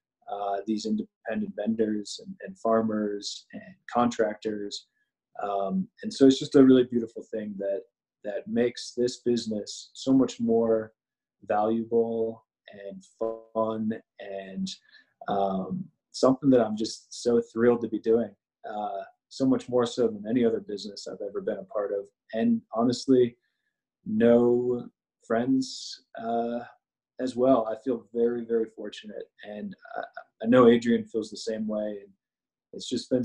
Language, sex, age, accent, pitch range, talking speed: English, male, 20-39, American, 110-185 Hz, 145 wpm